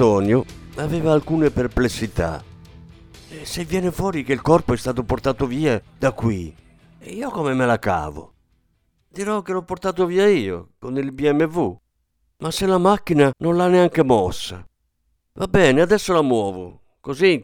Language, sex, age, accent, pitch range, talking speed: Italian, male, 50-69, native, 95-150 Hz, 160 wpm